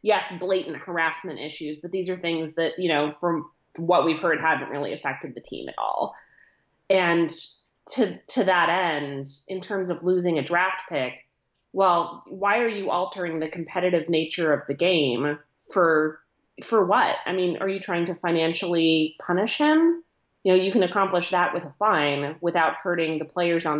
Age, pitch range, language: 30-49, 150-180 Hz, English